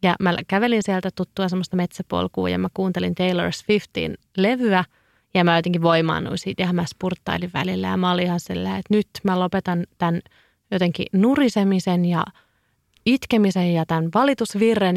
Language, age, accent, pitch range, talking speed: Finnish, 30-49, native, 170-200 Hz, 150 wpm